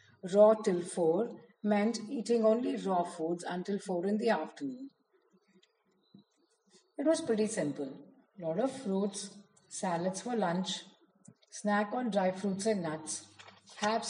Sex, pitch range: female, 175-220 Hz